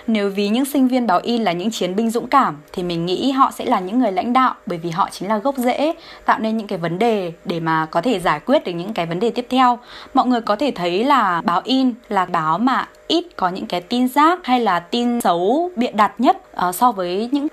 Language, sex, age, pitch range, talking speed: Vietnamese, female, 20-39, 185-255 Hz, 260 wpm